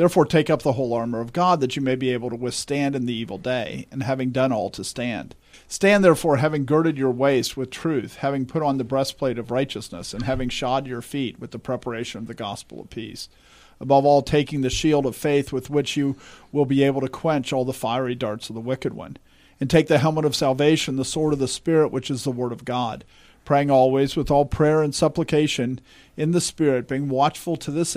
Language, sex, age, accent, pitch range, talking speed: English, male, 50-69, American, 130-155 Hz, 230 wpm